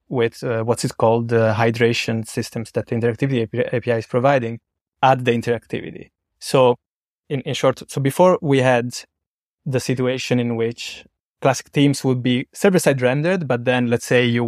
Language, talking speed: English, 175 wpm